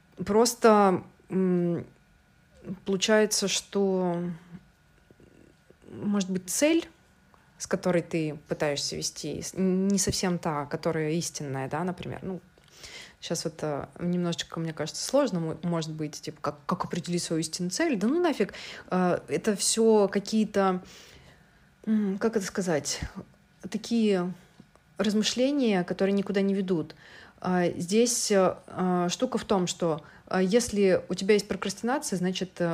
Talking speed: 110 wpm